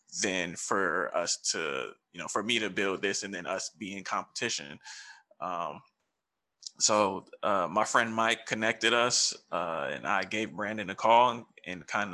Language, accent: English, American